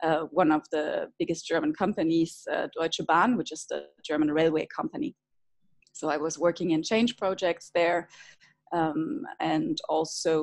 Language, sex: English, female